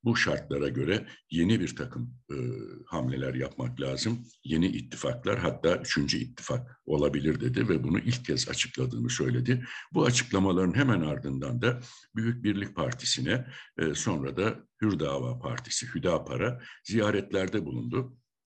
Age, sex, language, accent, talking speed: 60-79, male, Turkish, native, 130 wpm